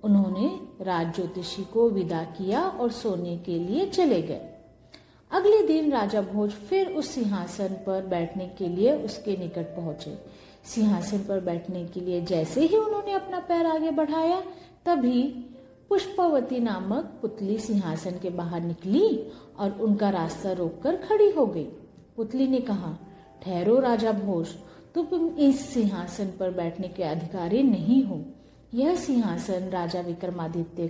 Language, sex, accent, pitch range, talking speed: Hindi, female, native, 175-255 Hz, 140 wpm